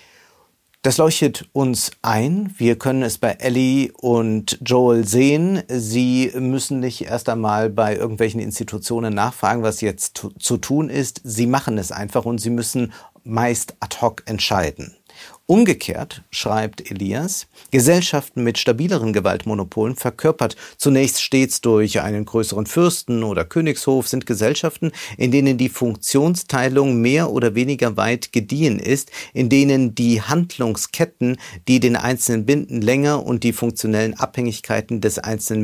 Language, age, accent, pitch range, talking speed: German, 50-69, German, 110-135 Hz, 135 wpm